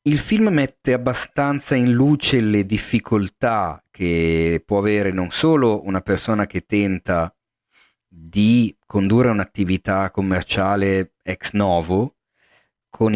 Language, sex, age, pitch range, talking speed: Italian, male, 40-59, 90-115 Hz, 110 wpm